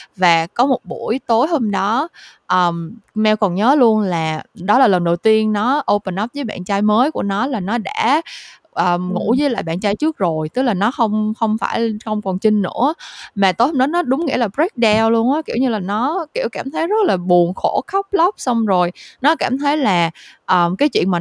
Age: 20-39